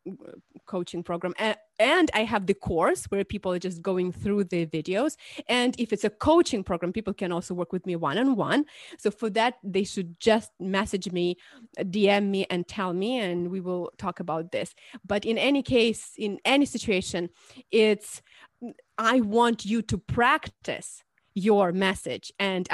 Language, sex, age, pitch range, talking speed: English, female, 30-49, 190-245 Hz, 165 wpm